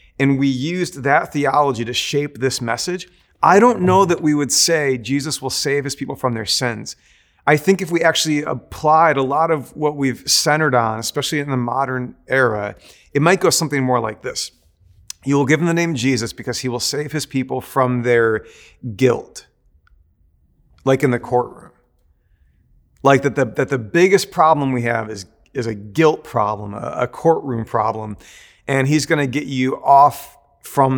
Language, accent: English, American